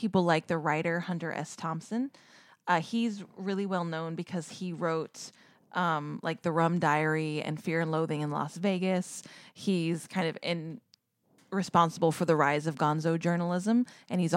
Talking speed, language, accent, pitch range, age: 165 wpm, English, American, 155-195 Hz, 20-39